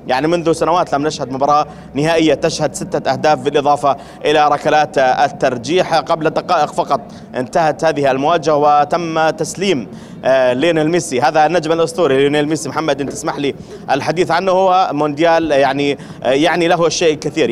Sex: male